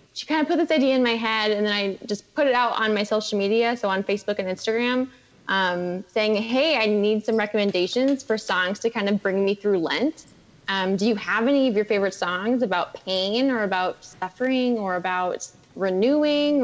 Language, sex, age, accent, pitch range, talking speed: English, female, 20-39, American, 195-250 Hz, 210 wpm